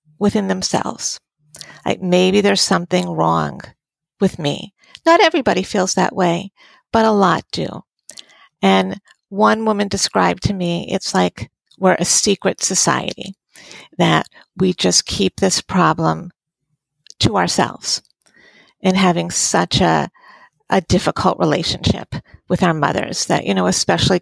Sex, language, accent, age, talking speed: female, English, American, 50-69, 130 wpm